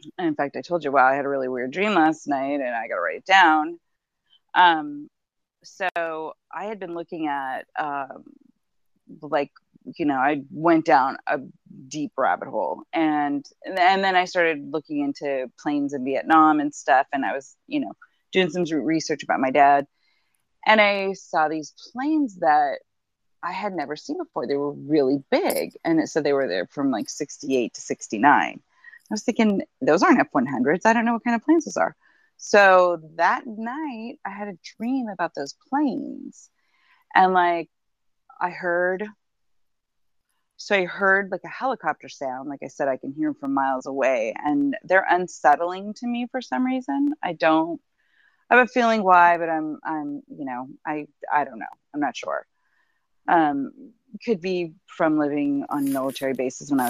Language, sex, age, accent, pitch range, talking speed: English, female, 30-49, American, 150-250 Hz, 180 wpm